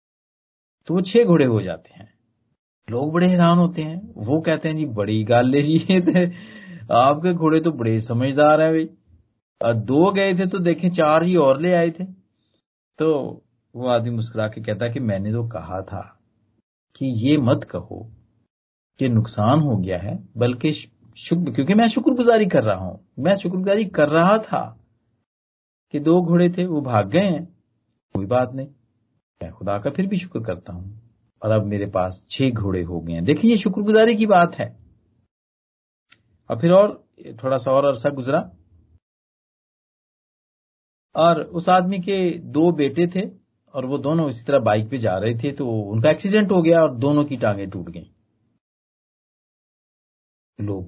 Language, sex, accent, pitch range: Hindi, male, native, 110-165 Hz